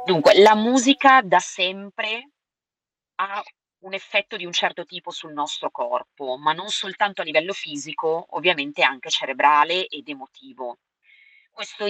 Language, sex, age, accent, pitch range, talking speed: Italian, female, 30-49, native, 155-205 Hz, 135 wpm